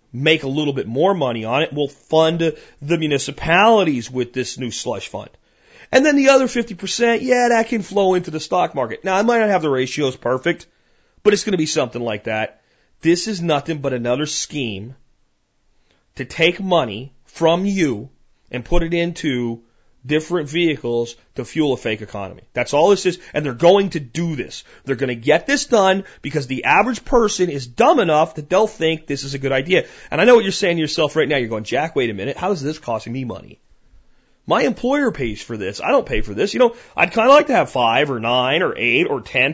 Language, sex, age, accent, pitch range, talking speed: French, male, 30-49, American, 125-195 Hz, 220 wpm